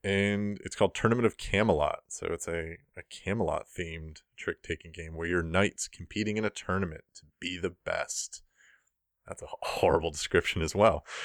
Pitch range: 85-100 Hz